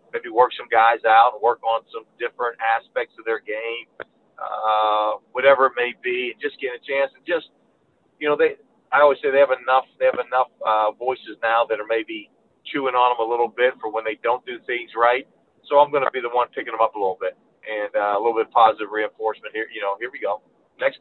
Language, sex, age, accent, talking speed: English, male, 40-59, American, 240 wpm